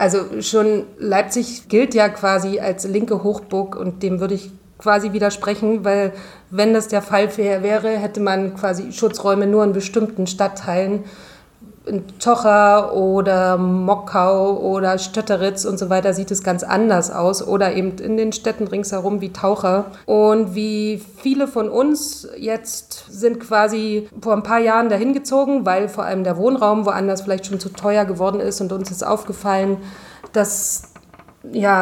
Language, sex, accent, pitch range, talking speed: German, female, German, 195-215 Hz, 155 wpm